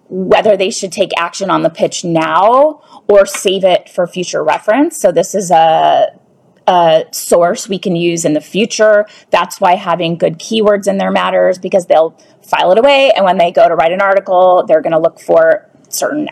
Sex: female